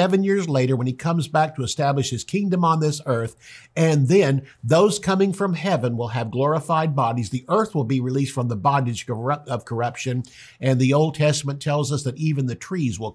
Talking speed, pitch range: 205 wpm, 125-170 Hz